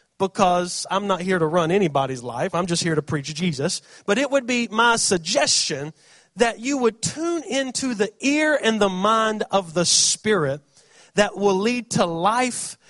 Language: English